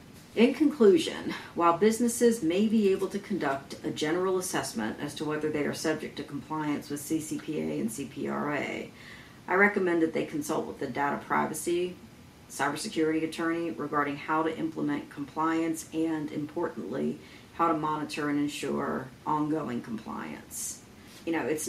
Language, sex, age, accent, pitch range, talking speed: English, female, 40-59, American, 140-160 Hz, 145 wpm